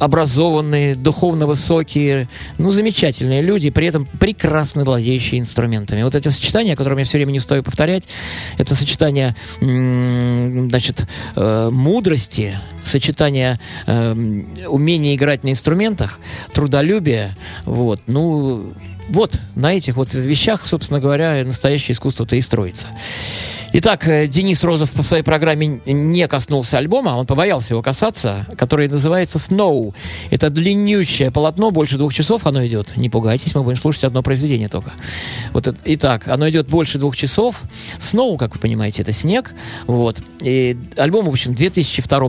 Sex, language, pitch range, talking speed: male, Russian, 120-155 Hz, 140 wpm